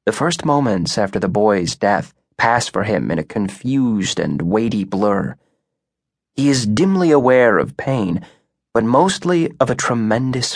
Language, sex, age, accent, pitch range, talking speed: English, male, 20-39, American, 115-145 Hz, 155 wpm